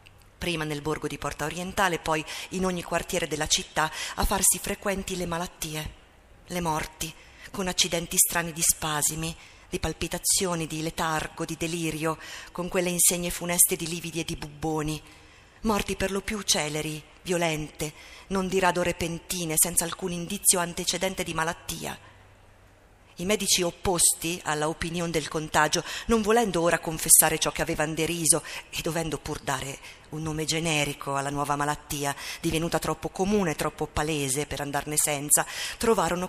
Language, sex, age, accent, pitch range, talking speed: Italian, female, 50-69, native, 155-185 Hz, 145 wpm